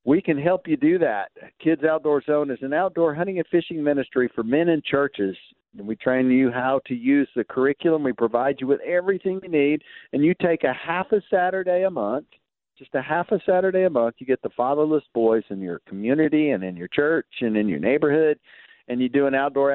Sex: male